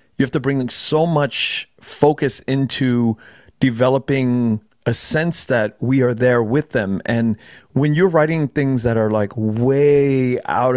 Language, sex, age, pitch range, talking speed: English, male, 30-49, 115-145 Hz, 150 wpm